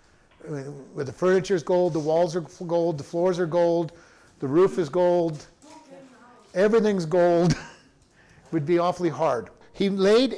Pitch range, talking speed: 165-195 Hz, 145 wpm